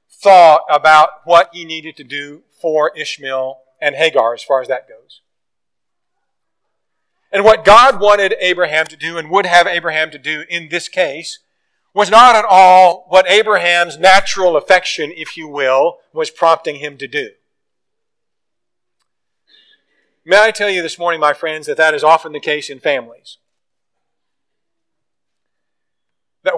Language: English